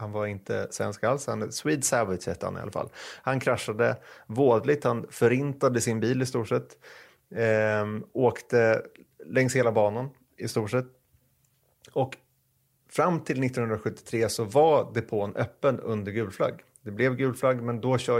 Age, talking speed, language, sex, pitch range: 30-49, 150 wpm, Swedish, male, 105-130 Hz